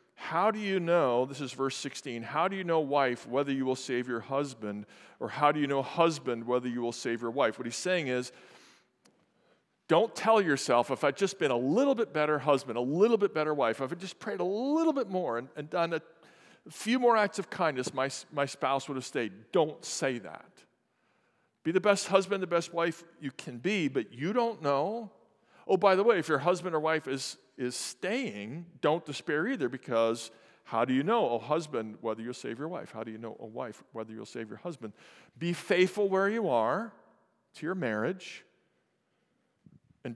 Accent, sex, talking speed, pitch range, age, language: American, male, 210 wpm, 125-180 Hz, 50-69, English